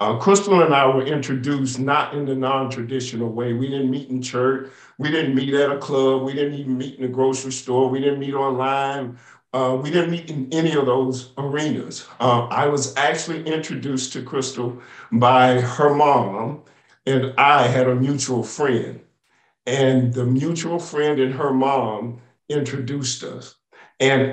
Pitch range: 125-145 Hz